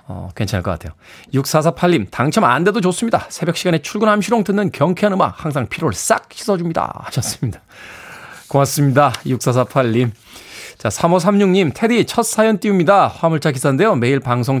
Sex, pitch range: male, 110-145 Hz